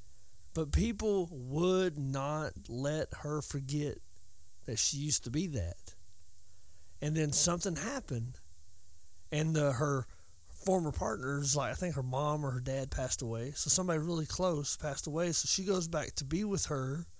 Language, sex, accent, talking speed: English, male, American, 160 wpm